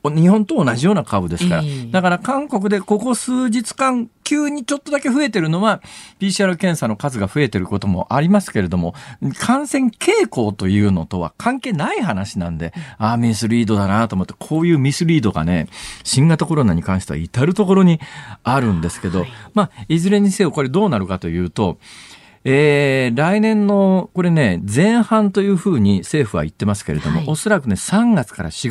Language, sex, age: Japanese, male, 40-59